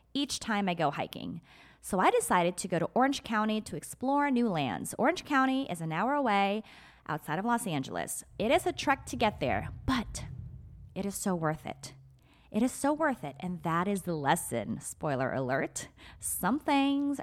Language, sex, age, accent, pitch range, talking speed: English, female, 20-39, American, 170-245 Hz, 190 wpm